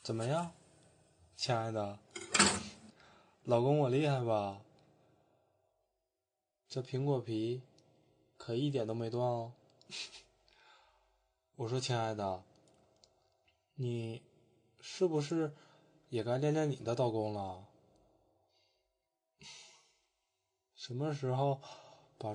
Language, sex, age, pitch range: Chinese, male, 20-39, 115-150 Hz